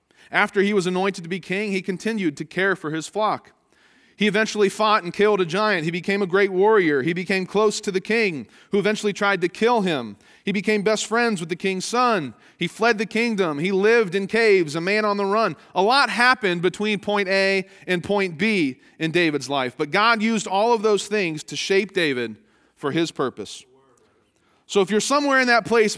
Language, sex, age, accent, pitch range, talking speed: English, male, 30-49, American, 155-205 Hz, 210 wpm